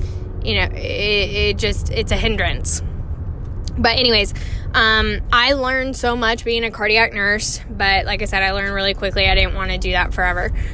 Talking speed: 190 wpm